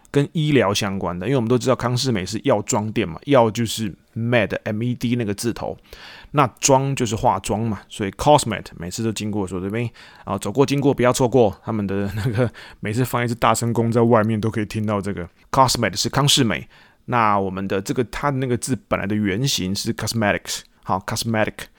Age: 20-39